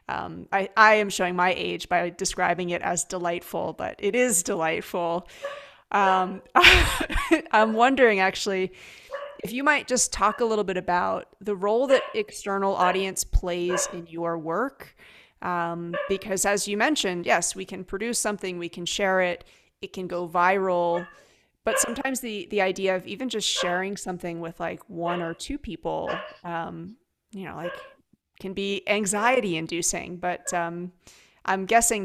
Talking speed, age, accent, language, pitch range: 155 wpm, 30-49, American, English, 175-210 Hz